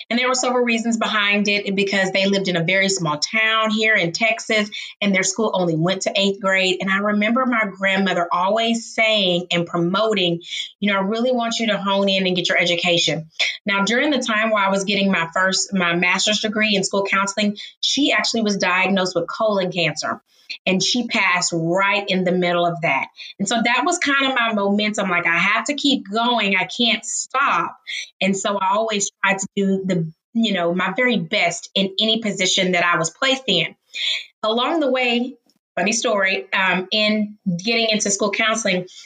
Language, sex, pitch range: English, female, 185-220 Hz